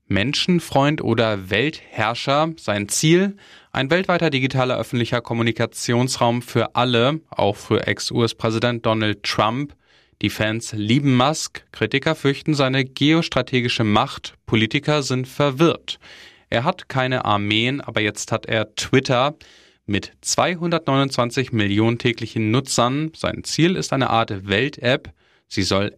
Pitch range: 110-140 Hz